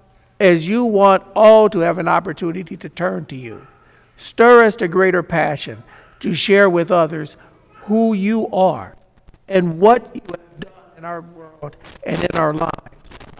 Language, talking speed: English, 160 wpm